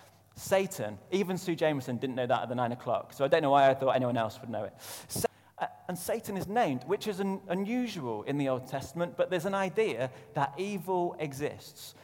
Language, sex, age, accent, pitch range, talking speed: English, male, 30-49, British, 125-170 Hz, 205 wpm